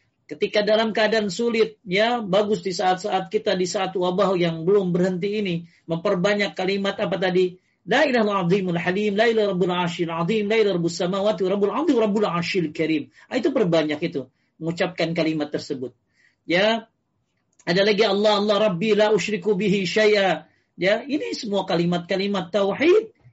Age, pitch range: 40-59, 175-230 Hz